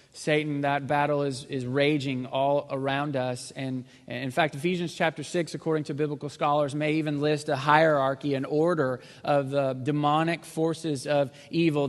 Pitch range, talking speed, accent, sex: 135-160 Hz, 165 wpm, American, male